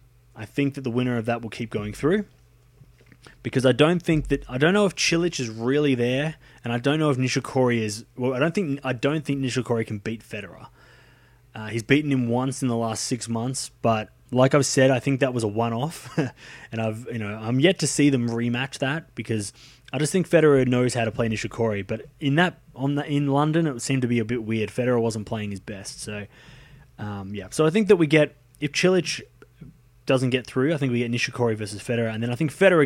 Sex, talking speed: male, 230 wpm